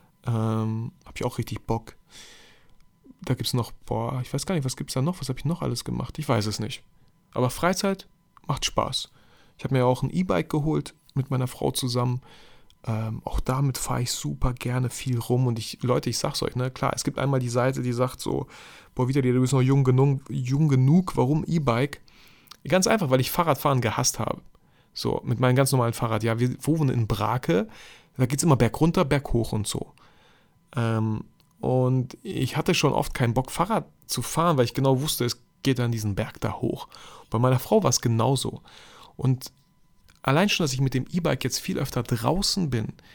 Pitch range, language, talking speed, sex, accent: 120-150 Hz, German, 210 wpm, male, German